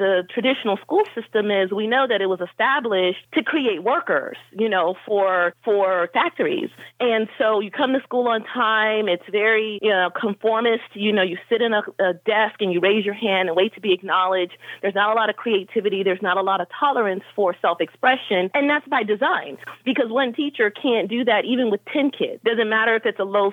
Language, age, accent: English, 40-59, American